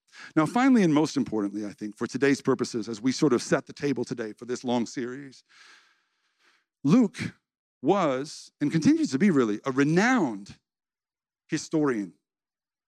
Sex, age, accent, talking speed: male, 50-69, American, 150 wpm